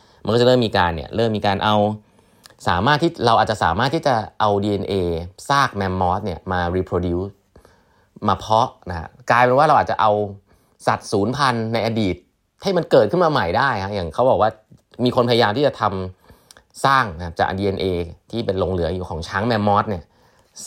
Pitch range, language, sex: 95-120 Hz, Thai, male